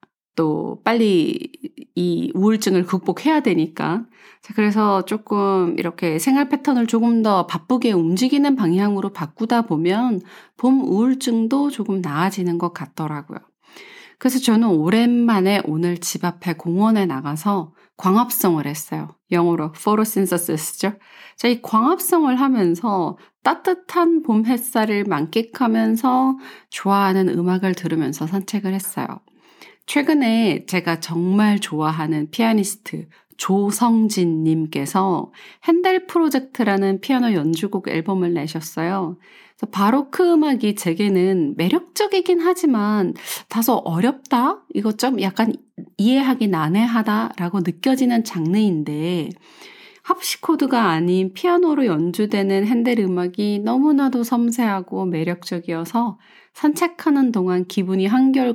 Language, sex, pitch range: Korean, female, 180-250 Hz